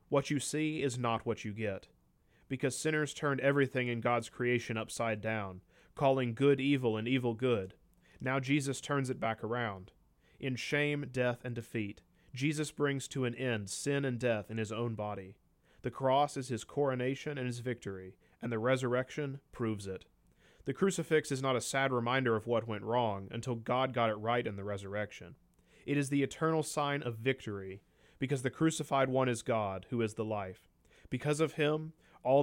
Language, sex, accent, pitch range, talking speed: English, male, American, 105-135 Hz, 185 wpm